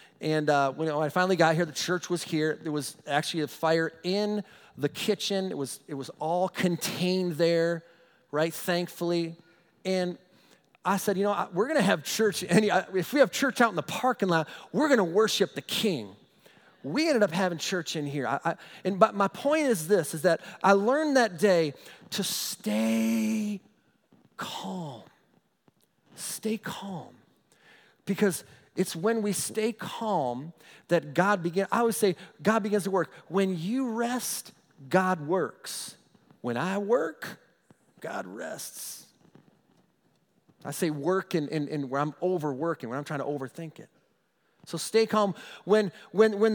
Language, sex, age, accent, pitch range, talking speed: English, male, 40-59, American, 165-215 Hz, 165 wpm